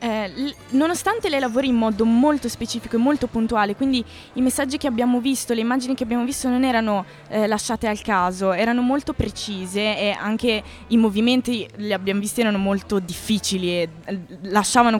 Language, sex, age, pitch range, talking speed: Italian, female, 20-39, 190-255 Hz, 175 wpm